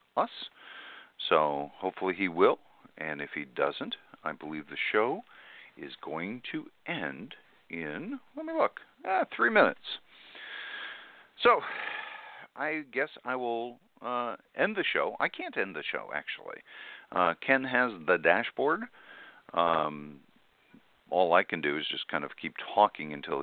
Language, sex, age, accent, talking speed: English, male, 50-69, American, 145 wpm